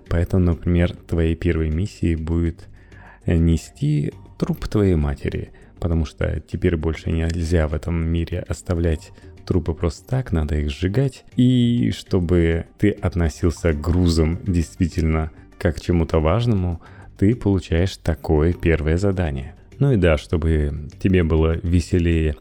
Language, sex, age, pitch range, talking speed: Russian, male, 30-49, 80-100 Hz, 130 wpm